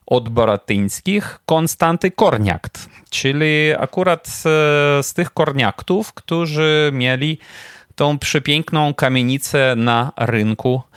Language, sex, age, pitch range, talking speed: Polish, male, 30-49, 110-145 Hz, 95 wpm